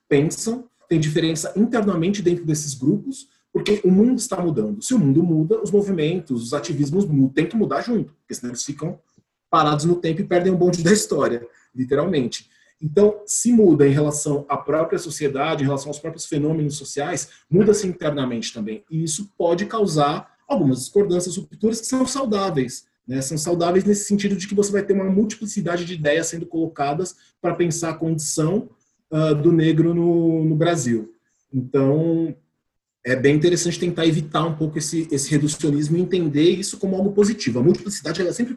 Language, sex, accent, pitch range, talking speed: Portuguese, male, Brazilian, 150-200 Hz, 175 wpm